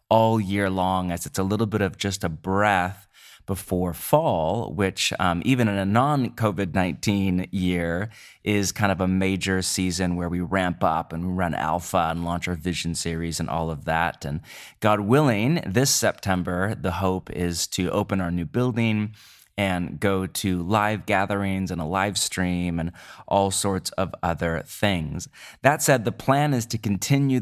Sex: male